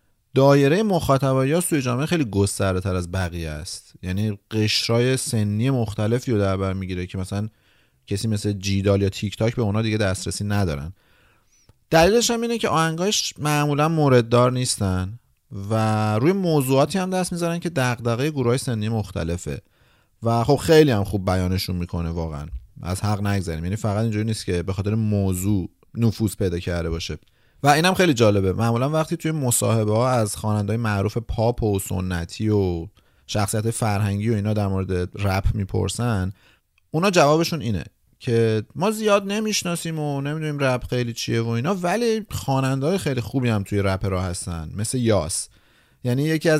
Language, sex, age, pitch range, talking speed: Persian, male, 30-49, 100-135 Hz, 165 wpm